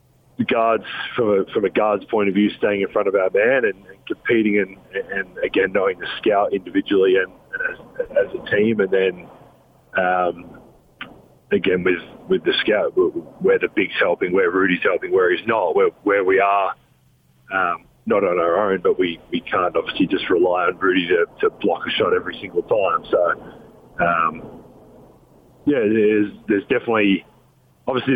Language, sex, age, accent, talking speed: English, male, 30-49, Australian, 175 wpm